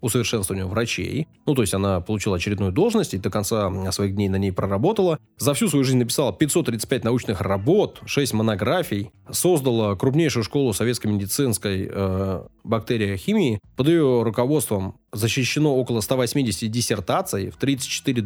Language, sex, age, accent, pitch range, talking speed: Russian, male, 20-39, native, 95-120 Hz, 145 wpm